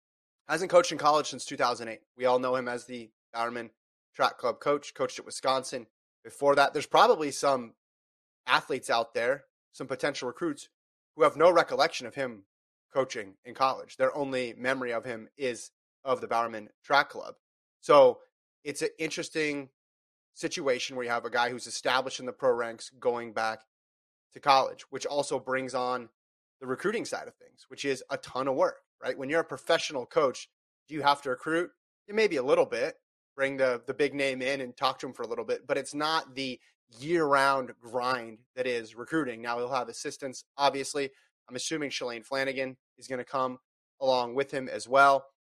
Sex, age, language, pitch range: male, 30-49, English, 120-150 Hz